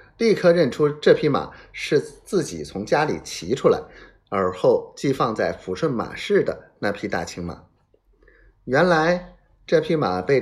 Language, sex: Chinese, male